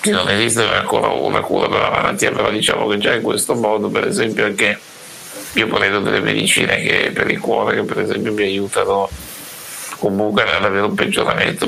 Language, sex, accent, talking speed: Italian, male, native, 185 wpm